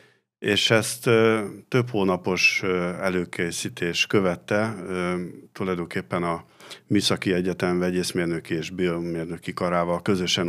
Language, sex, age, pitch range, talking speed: Hungarian, male, 50-69, 85-95 Hz, 105 wpm